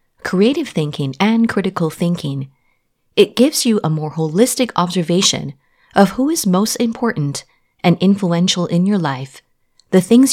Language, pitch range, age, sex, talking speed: English, 150-230 Hz, 30-49, female, 140 wpm